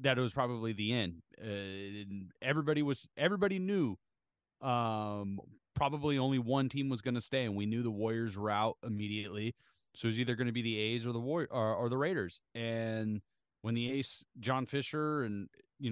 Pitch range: 110-130 Hz